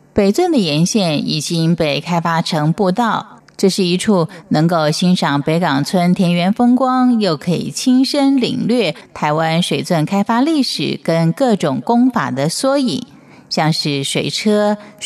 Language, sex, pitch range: Chinese, female, 165-240 Hz